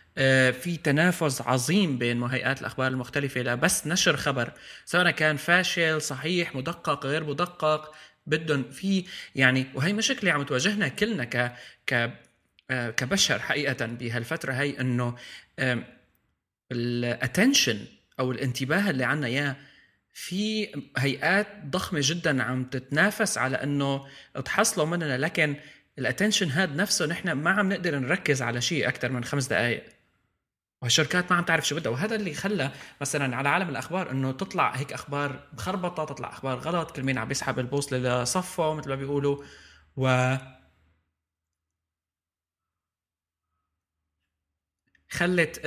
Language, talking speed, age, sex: Arabic, 125 wpm, 20-39, male